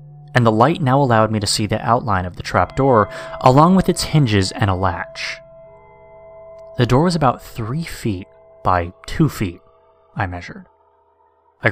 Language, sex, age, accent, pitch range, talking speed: English, male, 20-39, American, 100-150 Hz, 165 wpm